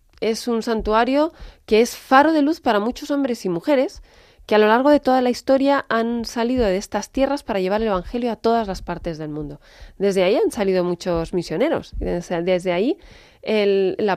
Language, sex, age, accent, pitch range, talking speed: Spanish, female, 30-49, Spanish, 175-230 Hz, 190 wpm